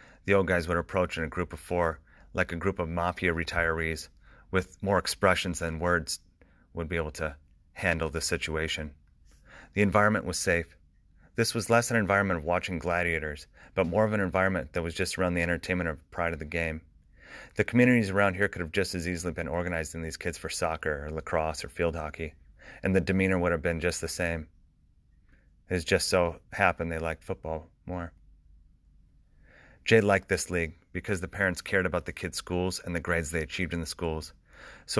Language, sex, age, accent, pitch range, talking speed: English, male, 30-49, American, 80-95 Hz, 195 wpm